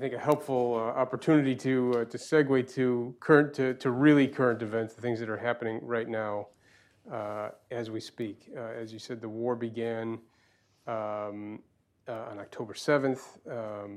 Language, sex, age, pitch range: English, male, 30-49, 110-130 Hz